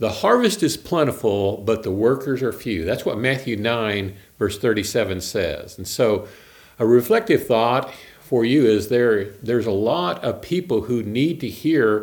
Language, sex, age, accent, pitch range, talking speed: English, male, 50-69, American, 110-140 Hz, 170 wpm